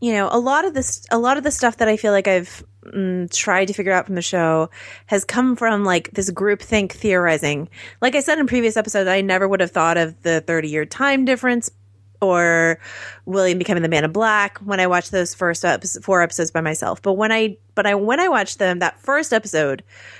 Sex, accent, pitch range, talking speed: female, American, 160-205 Hz, 225 wpm